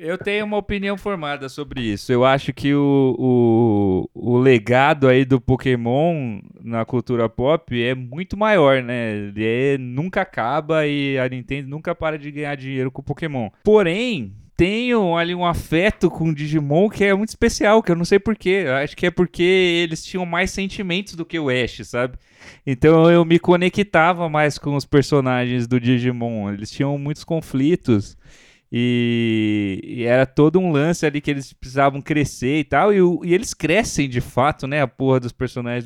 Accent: Brazilian